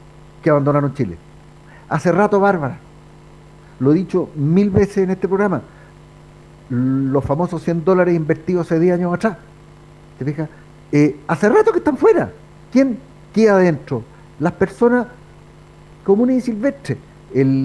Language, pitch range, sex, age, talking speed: Spanish, 150-200 Hz, male, 50-69, 135 wpm